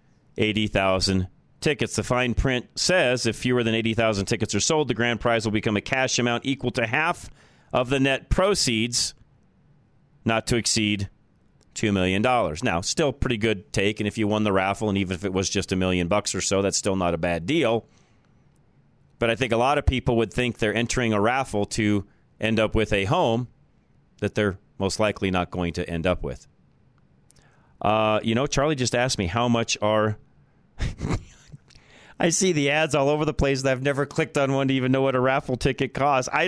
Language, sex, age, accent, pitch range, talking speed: English, male, 40-59, American, 105-135 Hz, 200 wpm